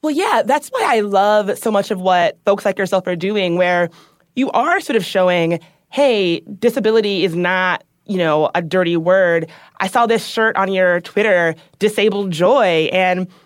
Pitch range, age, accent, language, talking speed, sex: 170-220 Hz, 20-39, American, English, 180 wpm, female